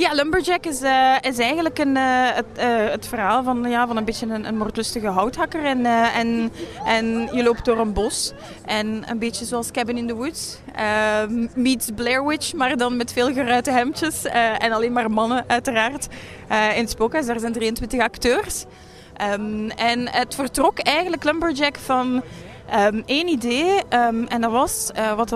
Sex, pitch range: female, 220-275 Hz